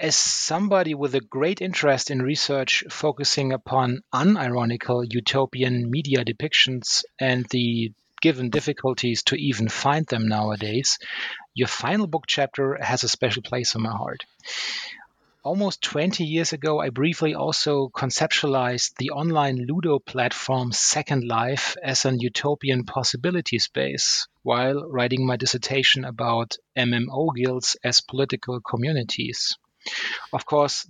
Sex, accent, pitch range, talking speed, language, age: male, German, 125-145 Hz, 125 wpm, English, 30-49